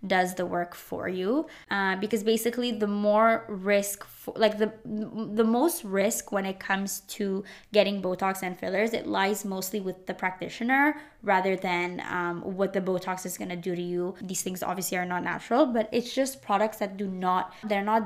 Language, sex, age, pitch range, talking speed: English, female, 20-39, 185-215 Hz, 190 wpm